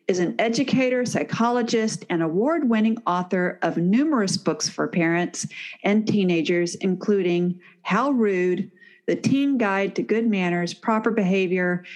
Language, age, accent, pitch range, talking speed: English, 50-69, American, 175-220 Hz, 125 wpm